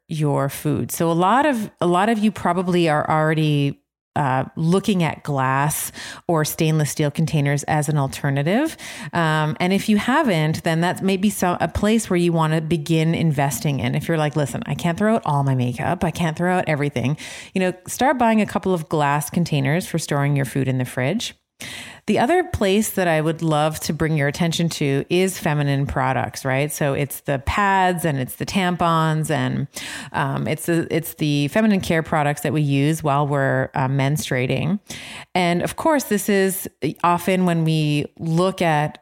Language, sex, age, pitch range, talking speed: English, female, 30-49, 145-175 Hz, 190 wpm